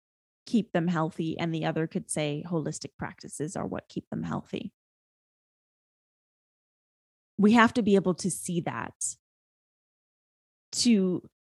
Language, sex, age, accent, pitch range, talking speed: English, female, 20-39, American, 175-215 Hz, 125 wpm